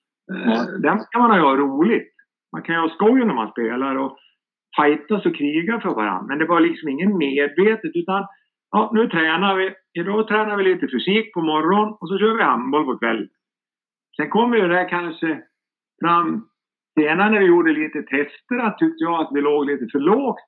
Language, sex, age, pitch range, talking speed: Swedish, male, 50-69, 145-195 Hz, 190 wpm